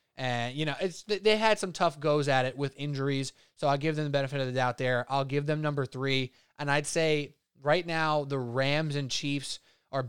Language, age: English, 20-39